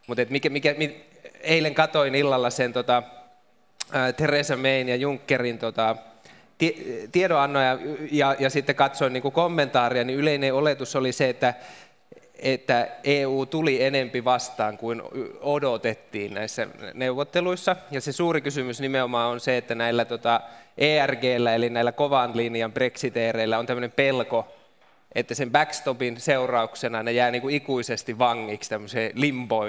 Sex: male